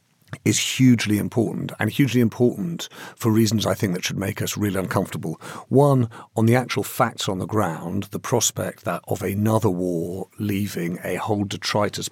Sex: male